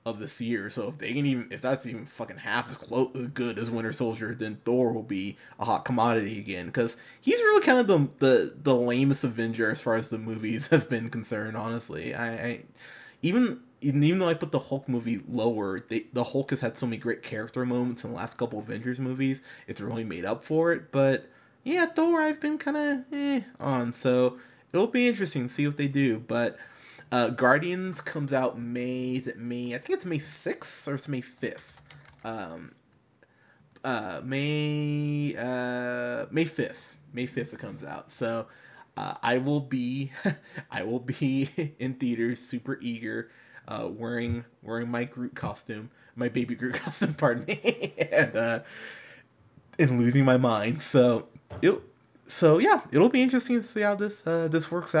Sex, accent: male, American